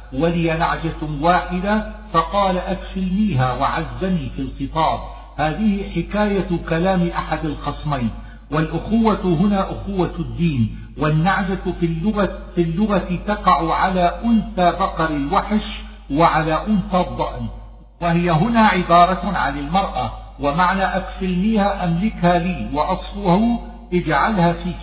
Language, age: Arabic, 50-69